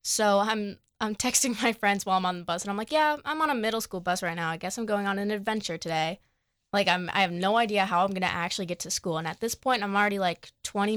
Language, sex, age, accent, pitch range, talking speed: English, female, 20-39, American, 185-235 Hz, 290 wpm